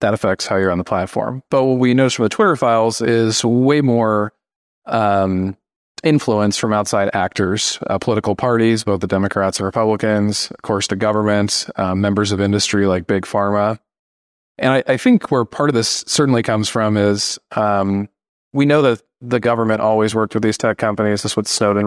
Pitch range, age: 95-115 Hz, 30-49